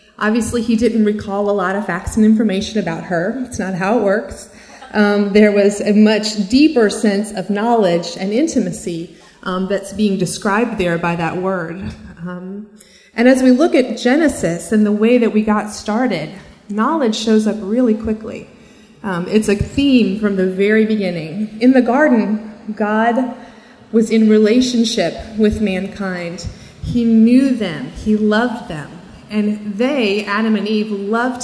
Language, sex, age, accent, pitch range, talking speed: English, female, 30-49, American, 195-235 Hz, 160 wpm